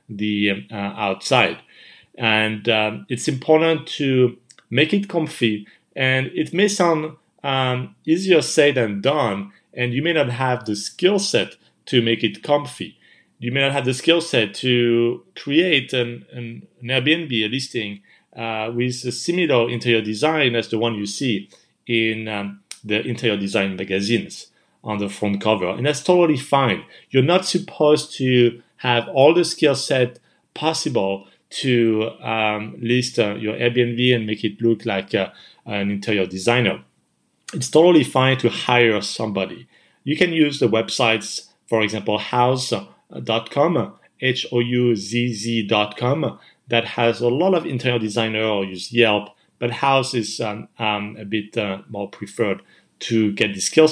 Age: 40-59